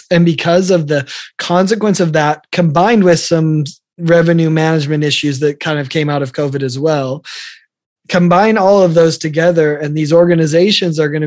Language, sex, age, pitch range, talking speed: English, male, 20-39, 145-170 Hz, 170 wpm